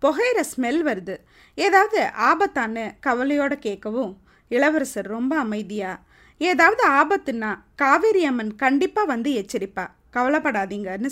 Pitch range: 235-350 Hz